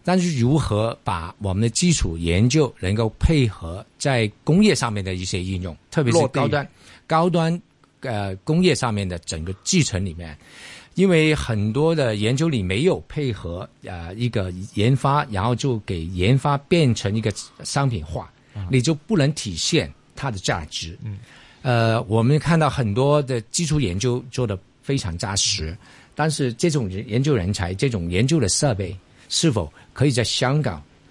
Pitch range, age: 100-140 Hz, 50-69